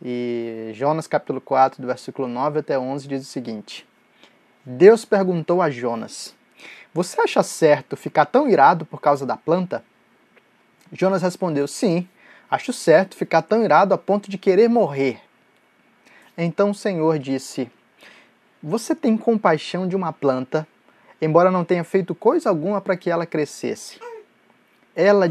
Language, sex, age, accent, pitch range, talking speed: Portuguese, male, 20-39, Brazilian, 145-195 Hz, 140 wpm